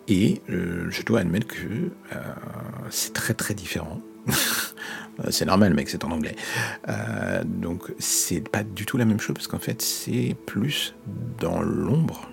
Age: 50-69